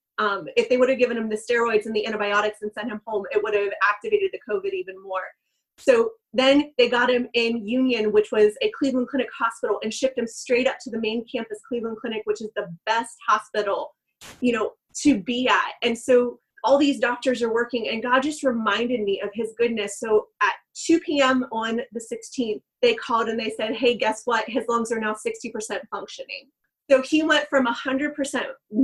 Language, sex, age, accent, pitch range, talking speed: English, female, 20-39, American, 220-265 Hz, 205 wpm